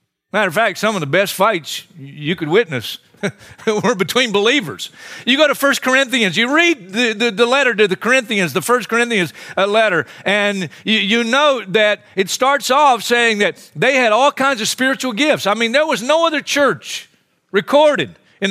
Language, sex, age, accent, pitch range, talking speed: English, male, 50-69, American, 155-230 Hz, 190 wpm